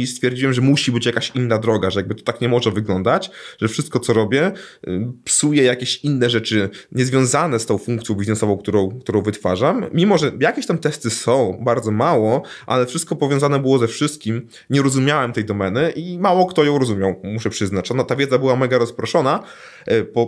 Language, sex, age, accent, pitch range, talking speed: Polish, male, 20-39, native, 105-130 Hz, 185 wpm